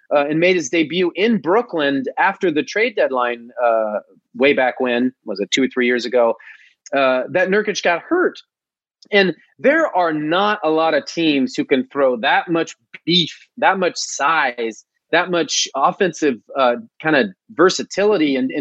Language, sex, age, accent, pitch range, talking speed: English, male, 30-49, American, 150-230 Hz, 170 wpm